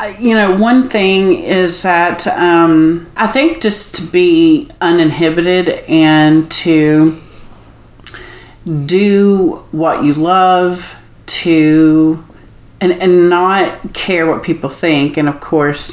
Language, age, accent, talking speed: English, 40-59, American, 115 wpm